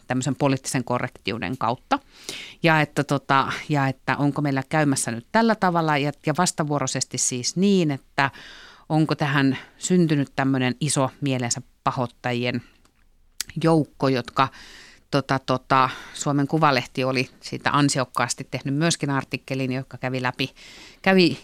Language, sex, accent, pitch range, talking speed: Finnish, female, native, 125-155 Hz, 125 wpm